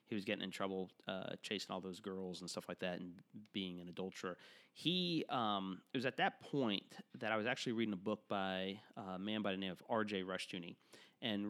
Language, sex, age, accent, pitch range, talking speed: English, male, 30-49, American, 95-115 Hz, 220 wpm